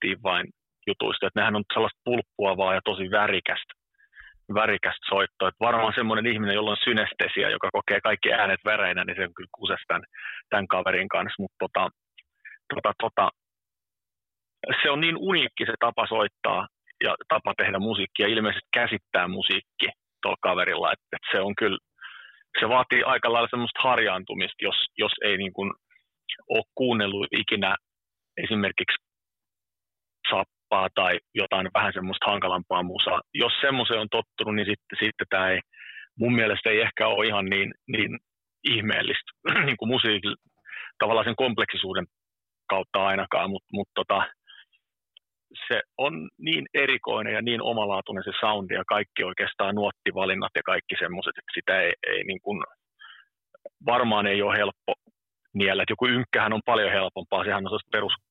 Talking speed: 145 wpm